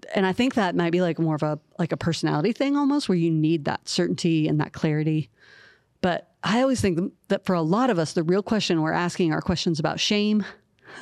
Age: 40-59